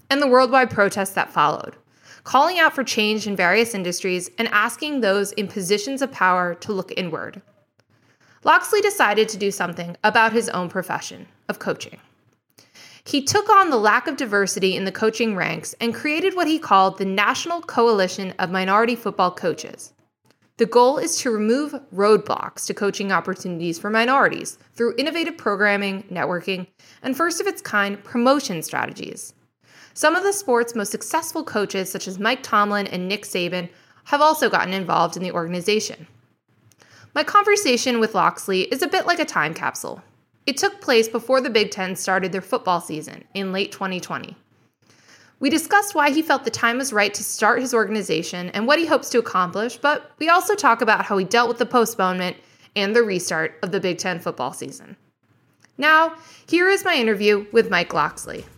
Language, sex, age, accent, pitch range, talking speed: English, female, 20-39, American, 190-270 Hz, 175 wpm